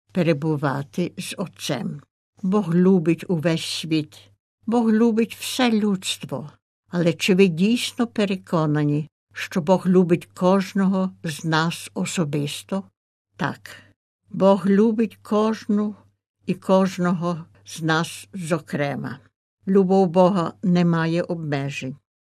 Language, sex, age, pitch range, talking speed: Ukrainian, female, 60-79, 150-200 Hz, 100 wpm